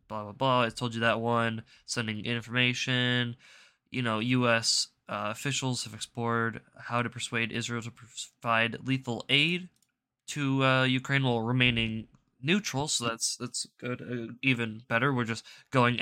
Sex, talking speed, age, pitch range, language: male, 155 wpm, 10-29, 115-130 Hz, English